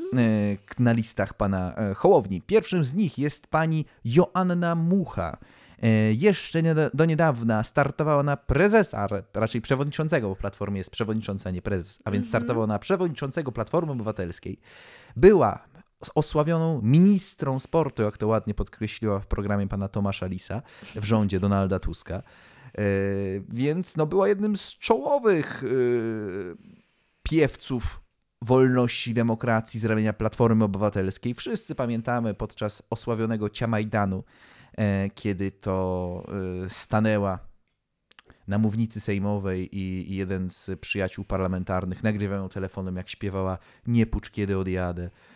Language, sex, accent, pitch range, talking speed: Polish, male, native, 100-145 Hz, 120 wpm